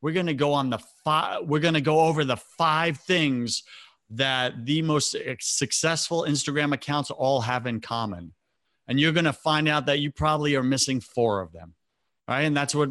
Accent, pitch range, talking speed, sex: American, 120-150 Hz, 170 wpm, male